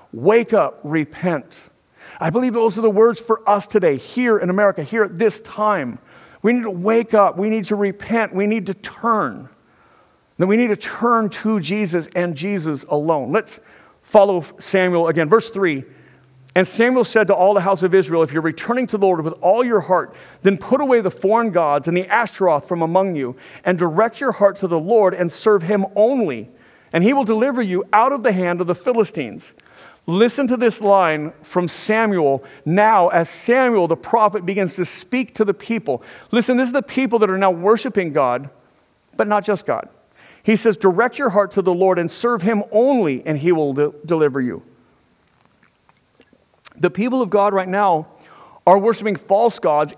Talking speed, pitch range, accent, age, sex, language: 190 wpm, 180-225 Hz, American, 50-69, male, English